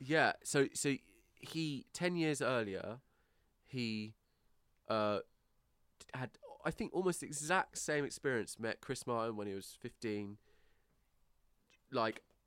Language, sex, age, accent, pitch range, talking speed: English, male, 20-39, British, 95-120 Hz, 120 wpm